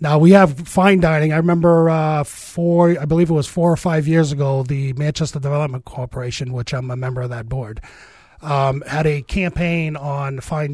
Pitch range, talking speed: 135-165 Hz, 195 wpm